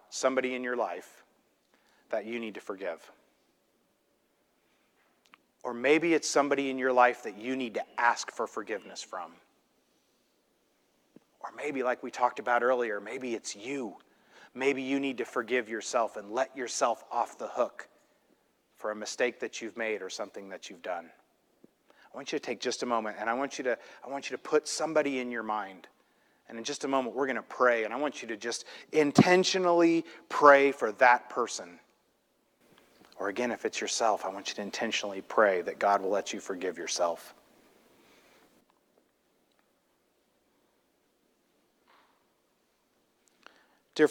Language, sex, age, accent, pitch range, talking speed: English, male, 30-49, American, 115-145 Hz, 155 wpm